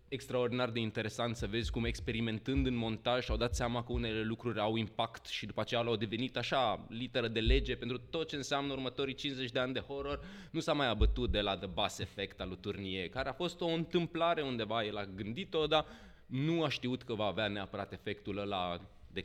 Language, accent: Romanian, native